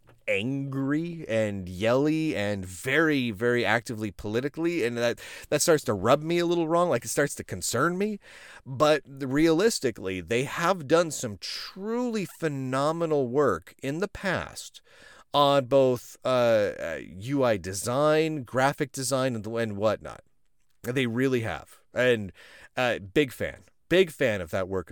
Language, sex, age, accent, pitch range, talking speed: English, male, 30-49, American, 120-170 Hz, 135 wpm